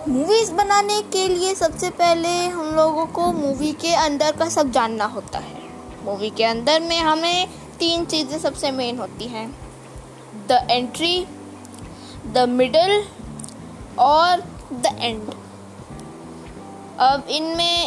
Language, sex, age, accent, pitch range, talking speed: Hindi, female, 20-39, native, 250-335 Hz, 125 wpm